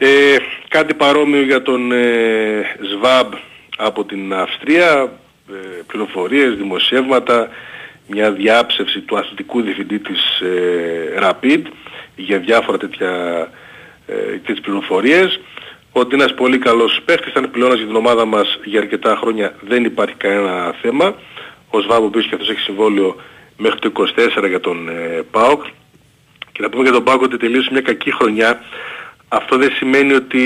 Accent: native